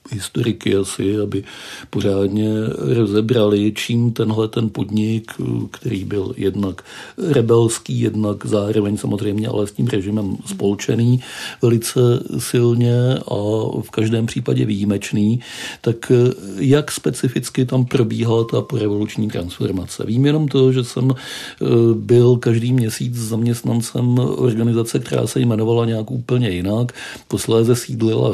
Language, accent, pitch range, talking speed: Czech, native, 105-125 Hz, 115 wpm